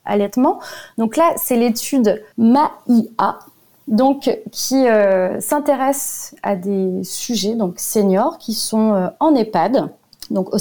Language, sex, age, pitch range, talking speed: French, female, 30-49, 210-265 Hz, 120 wpm